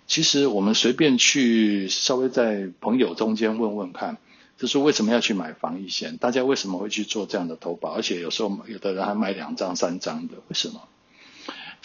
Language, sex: Chinese, male